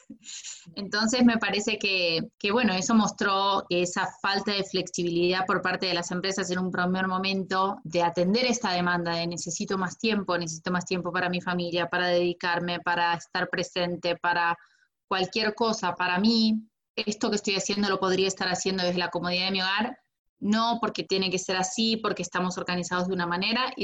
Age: 20-39